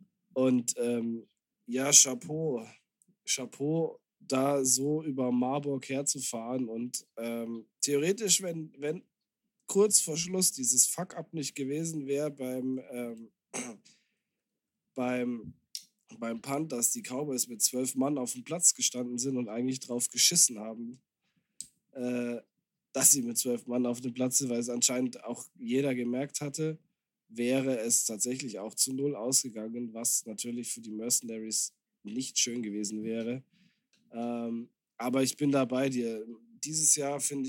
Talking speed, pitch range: 135 wpm, 120-145 Hz